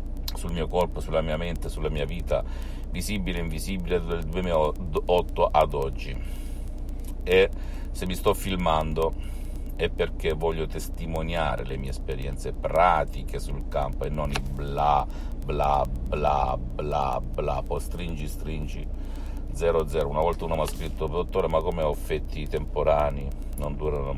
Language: Italian